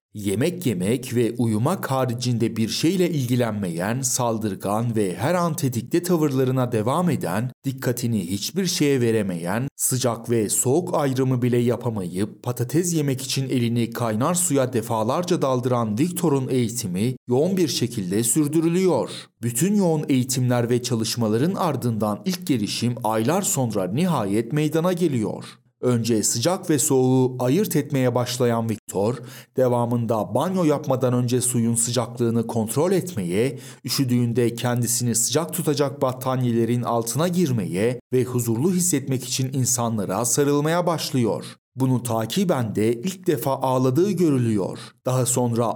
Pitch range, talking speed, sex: 115-145 Hz, 120 wpm, male